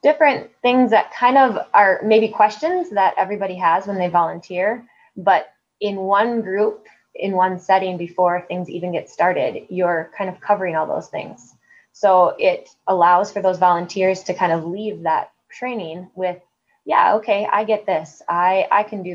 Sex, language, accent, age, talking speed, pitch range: female, English, American, 20-39, 170 wpm, 180-215 Hz